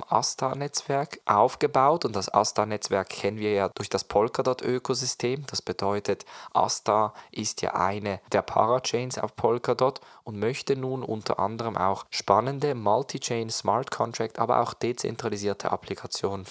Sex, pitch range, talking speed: male, 100-130 Hz, 120 wpm